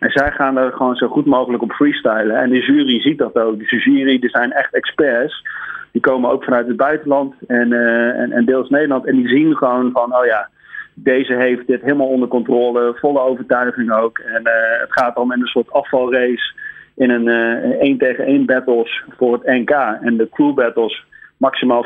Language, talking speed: Dutch, 205 wpm